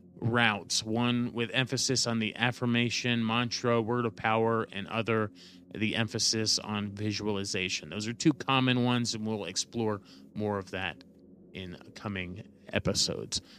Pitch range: 105-125 Hz